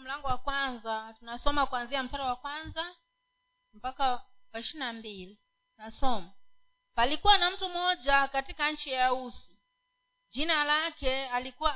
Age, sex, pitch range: 40-59, female, 255-350 Hz